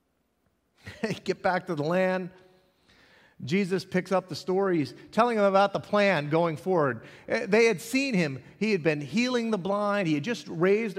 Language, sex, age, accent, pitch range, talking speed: English, male, 40-59, American, 195-310 Hz, 170 wpm